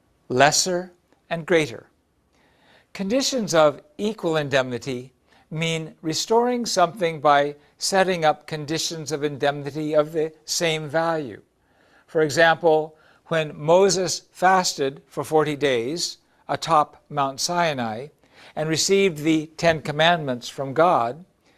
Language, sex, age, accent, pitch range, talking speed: English, male, 60-79, American, 145-180 Hz, 105 wpm